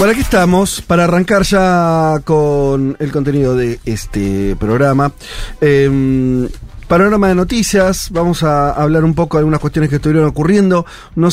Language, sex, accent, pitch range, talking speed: Spanish, male, Argentinian, 120-160 Hz, 150 wpm